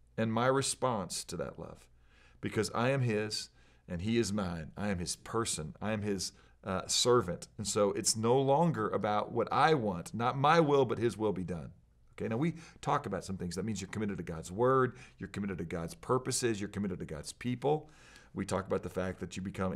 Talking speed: 220 wpm